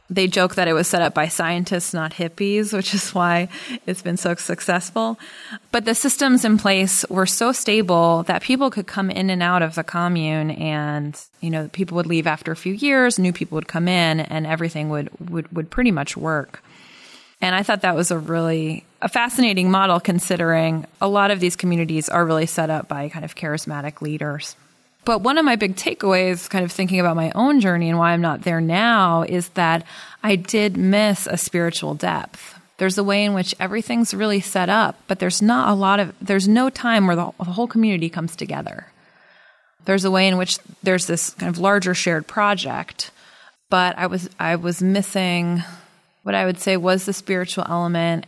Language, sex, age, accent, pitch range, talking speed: English, female, 20-39, American, 170-200 Hz, 200 wpm